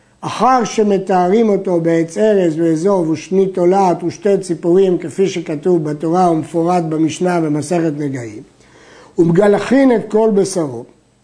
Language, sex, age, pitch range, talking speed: Hebrew, male, 60-79, 165-225 Hz, 110 wpm